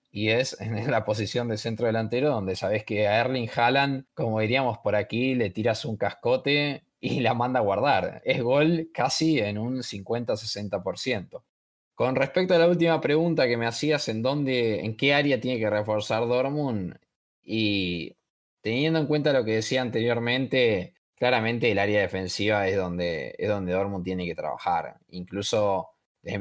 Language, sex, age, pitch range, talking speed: Spanish, male, 20-39, 100-135 Hz, 165 wpm